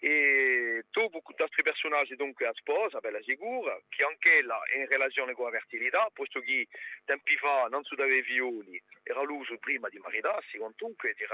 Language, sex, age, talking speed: French, male, 40-59, 170 wpm